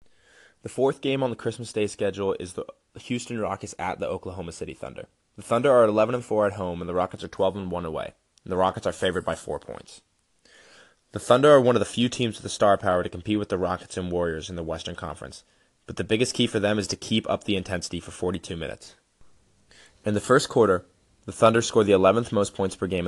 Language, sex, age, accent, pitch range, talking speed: English, male, 20-39, American, 95-120 Hz, 240 wpm